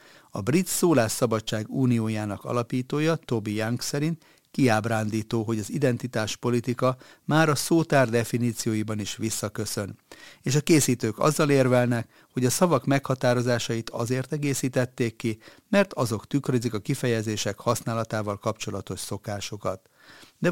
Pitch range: 110-135 Hz